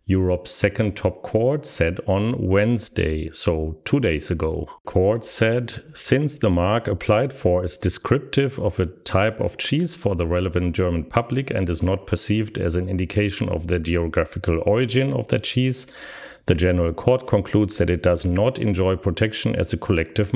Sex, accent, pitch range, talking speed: male, German, 90-130 Hz, 170 wpm